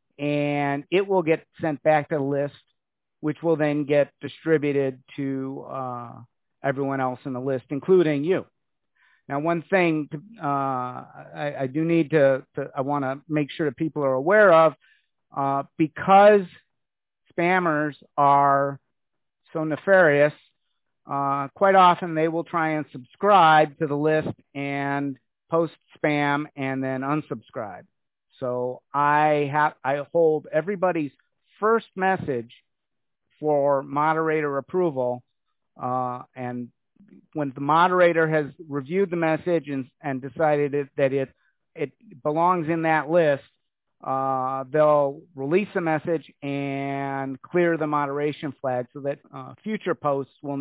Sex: male